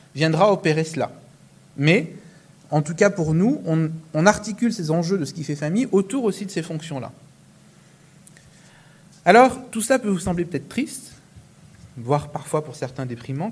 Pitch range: 135-185 Hz